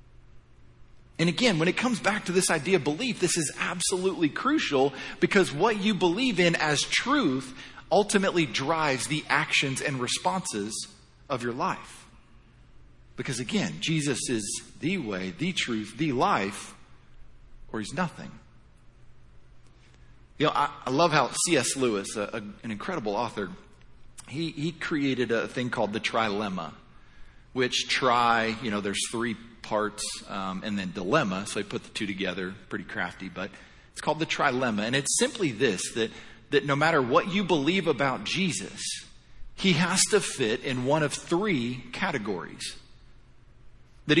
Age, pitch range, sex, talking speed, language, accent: 40-59, 110-170 Hz, male, 150 wpm, English, American